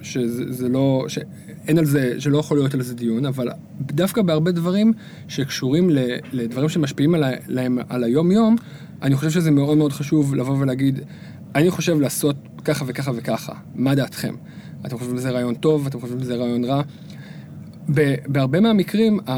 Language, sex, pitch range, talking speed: Hebrew, male, 125-160 Hz, 160 wpm